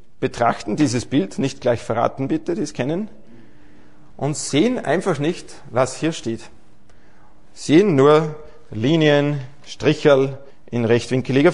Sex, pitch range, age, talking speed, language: male, 110-150 Hz, 40-59, 125 wpm, German